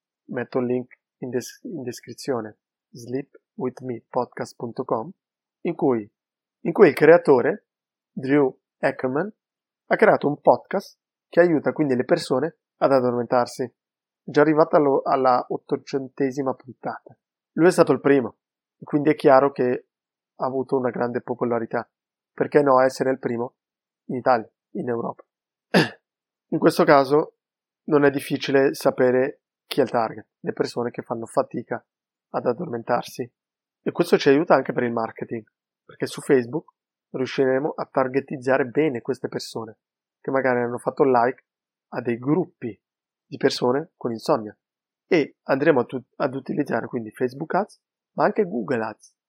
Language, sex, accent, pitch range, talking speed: Italian, male, native, 125-150 Hz, 140 wpm